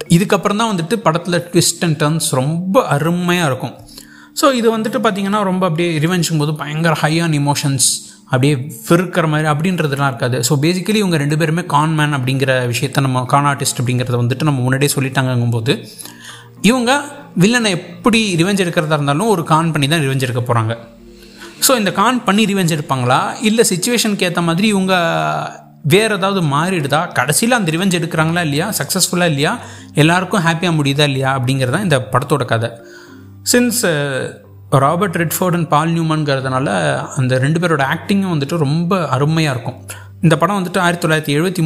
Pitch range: 135-180 Hz